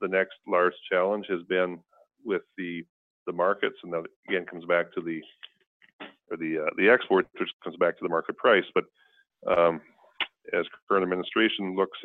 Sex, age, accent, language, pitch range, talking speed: male, 40-59, American, English, 90-110 Hz, 175 wpm